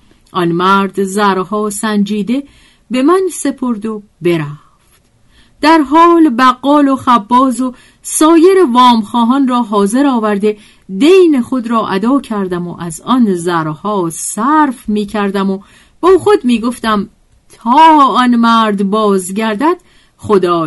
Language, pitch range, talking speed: Persian, 190-265 Hz, 120 wpm